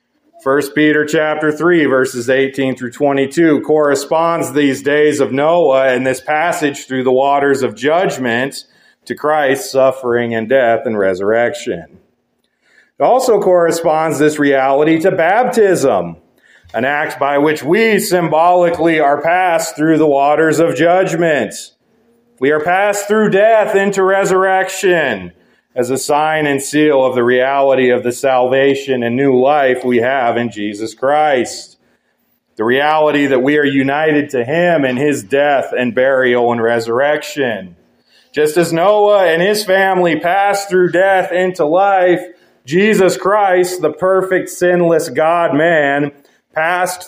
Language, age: English, 40-59